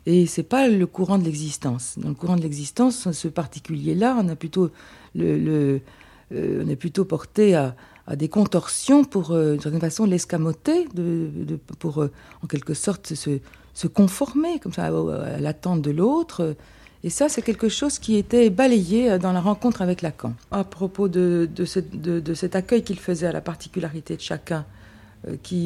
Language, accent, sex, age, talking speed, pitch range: French, French, female, 50-69, 190 wpm, 145-190 Hz